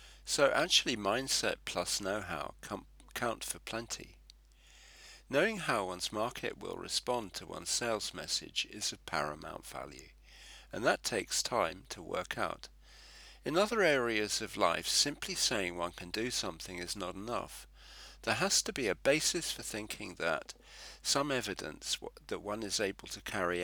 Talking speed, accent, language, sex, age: 150 wpm, British, English, male, 50-69